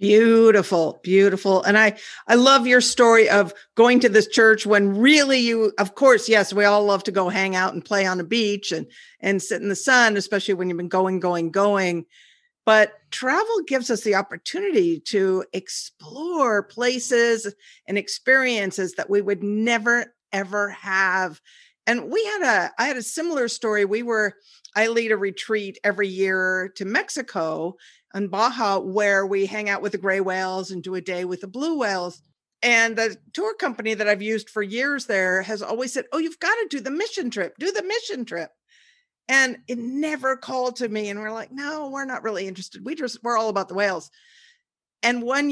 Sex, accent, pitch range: female, American, 190-255 Hz